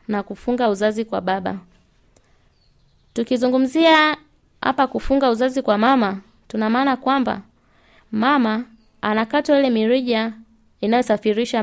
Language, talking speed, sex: Swahili, 100 wpm, female